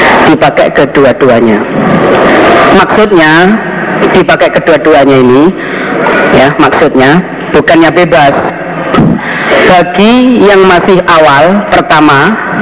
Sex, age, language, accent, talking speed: female, 40-59, Indonesian, native, 70 wpm